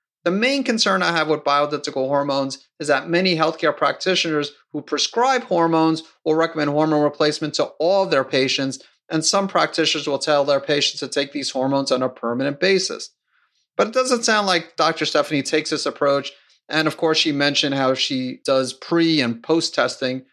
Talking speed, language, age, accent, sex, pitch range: 180 wpm, English, 30-49, American, male, 135-165 Hz